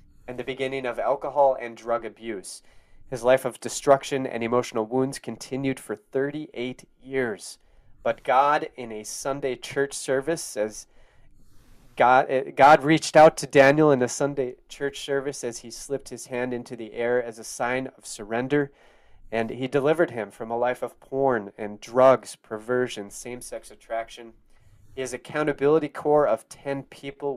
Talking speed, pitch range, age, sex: 155 wpm, 115-135 Hz, 30-49, male